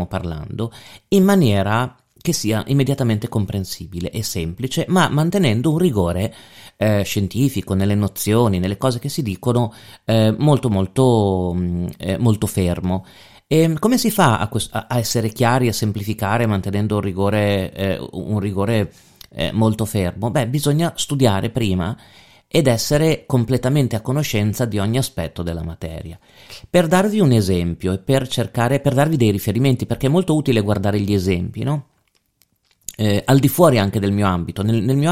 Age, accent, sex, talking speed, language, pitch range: 30-49, native, male, 155 wpm, Italian, 95-125 Hz